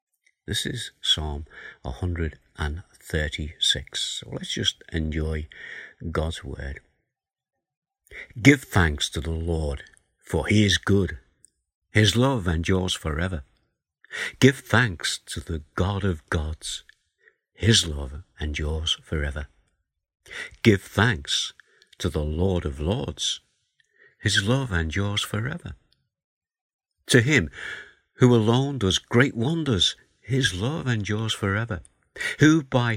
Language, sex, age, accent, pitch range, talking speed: English, male, 60-79, British, 80-110 Hz, 110 wpm